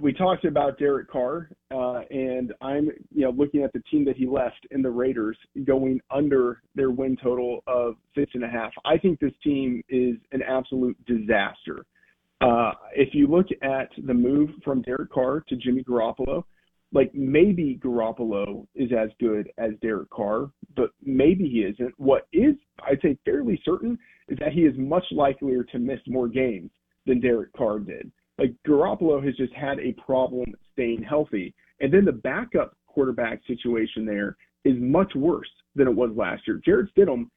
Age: 40-59